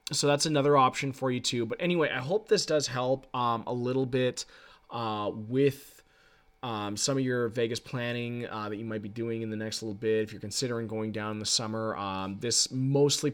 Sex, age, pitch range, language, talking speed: male, 20-39, 110-135 Hz, English, 215 wpm